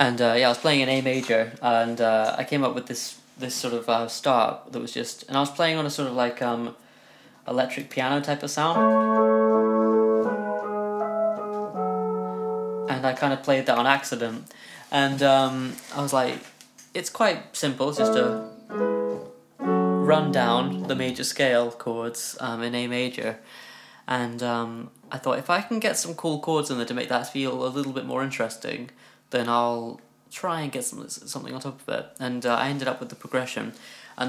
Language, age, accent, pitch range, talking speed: English, 20-39, British, 115-135 Hz, 195 wpm